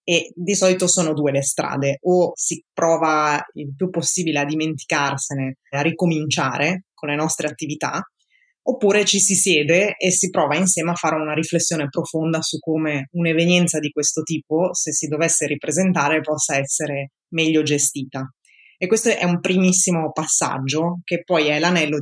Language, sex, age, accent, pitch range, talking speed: Italian, female, 20-39, native, 150-175 Hz, 160 wpm